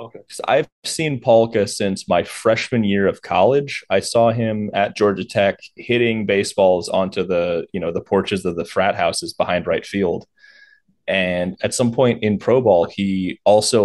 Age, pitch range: 20-39, 95-115 Hz